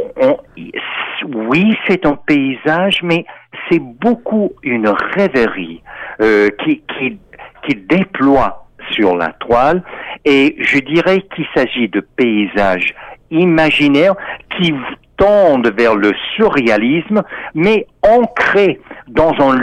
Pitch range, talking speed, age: 130-200 Hz, 105 wpm, 60-79